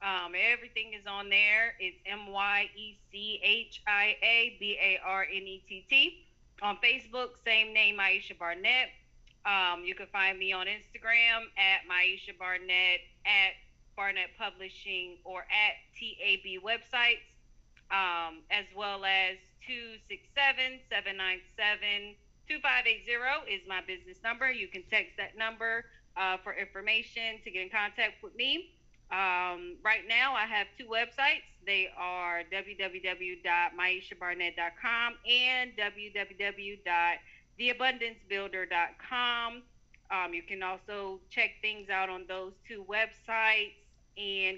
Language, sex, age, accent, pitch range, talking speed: English, female, 30-49, American, 190-235 Hz, 100 wpm